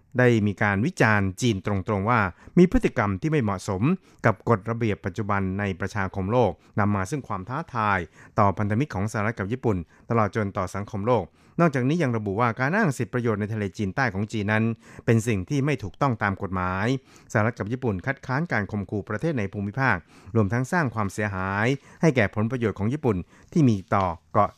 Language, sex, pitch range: Thai, male, 100-125 Hz